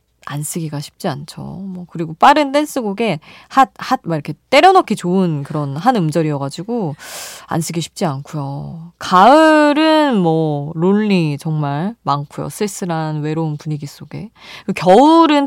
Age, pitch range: 20-39, 150-225 Hz